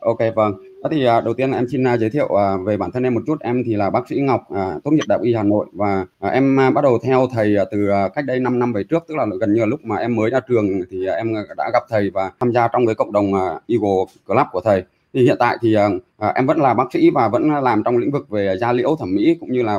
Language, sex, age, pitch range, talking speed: Vietnamese, male, 20-39, 115-190 Hz, 280 wpm